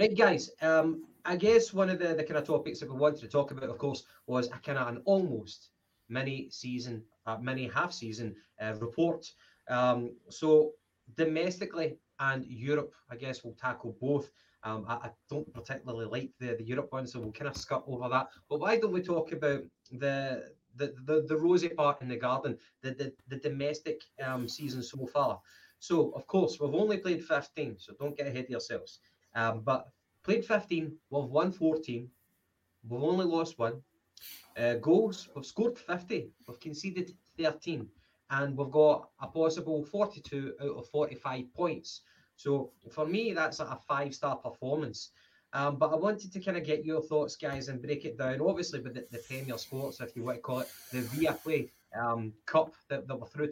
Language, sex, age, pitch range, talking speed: English, male, 20-39, 120-160 Hz, 190 wpm